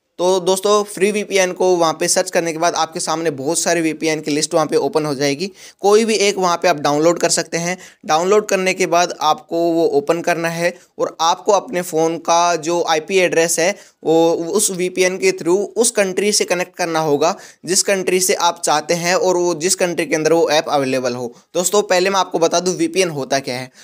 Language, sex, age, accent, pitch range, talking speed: Hindi, male, 20-39, native, 155-185 Hz, 220 wpm